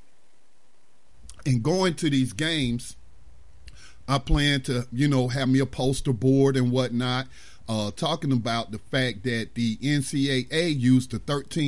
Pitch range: 115-145 Hz